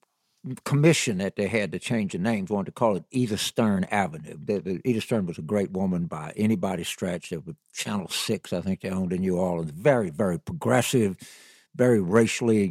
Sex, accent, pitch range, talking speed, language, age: male, American, 110-170 Hz, 195 wpm, English, 60-79